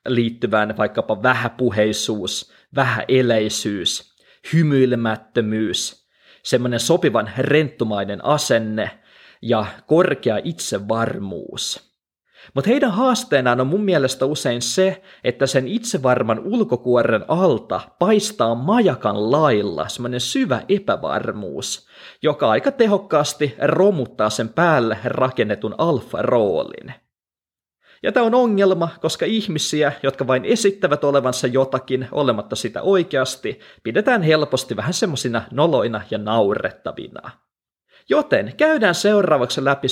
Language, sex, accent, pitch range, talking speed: Finnish, male, native, 120-190 Hz, 95 wpm